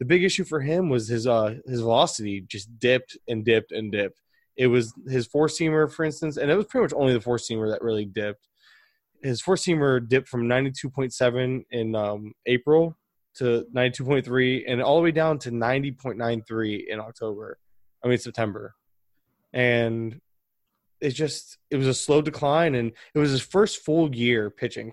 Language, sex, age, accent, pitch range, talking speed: English, male, 20-39, American, 115-150 Hz, 170 wpm